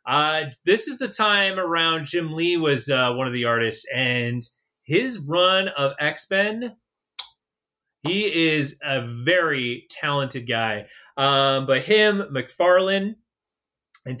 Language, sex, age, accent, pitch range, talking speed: English, male, 30-49, American, 135-170 Hz, 125 wpm